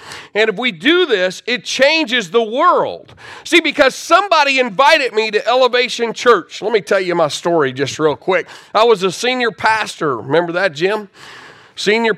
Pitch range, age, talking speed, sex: 165-250 Hz, 40-59, 170 wpm, male